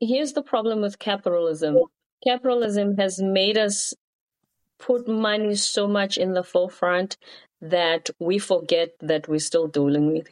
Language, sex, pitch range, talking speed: English, female, 160-210 Hz, 140 wpm